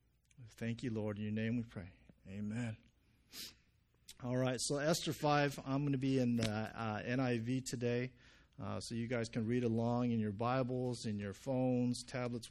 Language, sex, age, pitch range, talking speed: English, male, 40-59, 115-145 Hz, 175 wpm